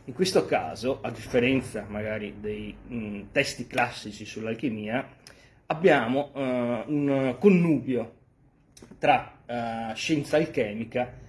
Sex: male